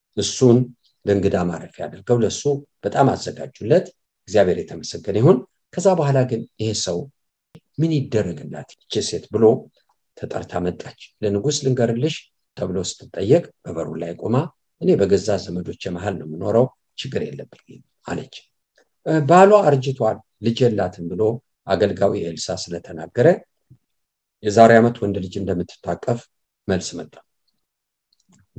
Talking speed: 90 wpm